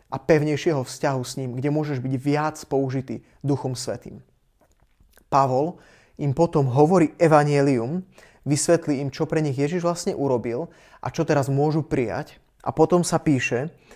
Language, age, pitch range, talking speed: Slovak, 20-39, 135-160 Hz, 145 wpm